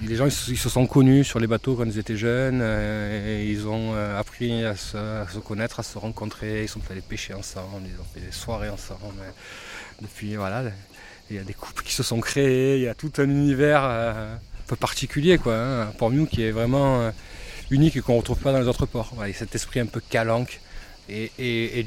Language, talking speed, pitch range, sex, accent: French, 235 wpm, 105-120 Hz, male, French